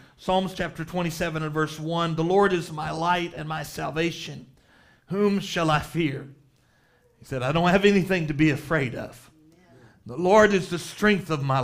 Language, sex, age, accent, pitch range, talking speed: English, male, 40-59, American, 150-195 Hz, 180 wpm